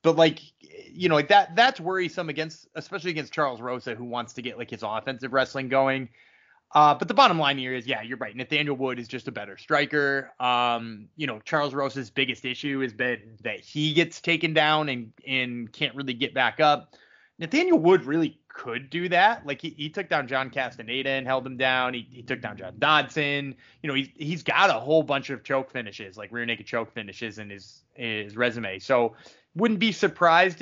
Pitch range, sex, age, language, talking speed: 130-165 Hz, male, 20-39, English, 210 wpm